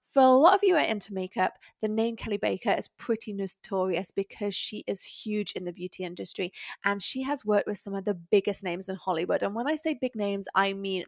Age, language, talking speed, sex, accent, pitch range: 20-39, English, 240 wpm, female, British, 190-230 Hz